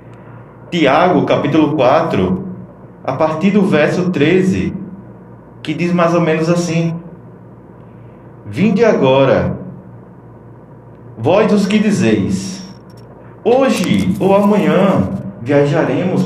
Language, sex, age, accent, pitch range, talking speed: Portuguese, male, 20-39, Brazilian, 115-175 Hz, 90 wpm